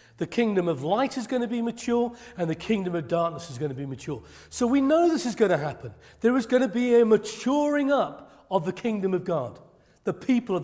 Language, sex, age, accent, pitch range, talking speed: English, male, 40-59, British, 155-235 Hz, 245 wpm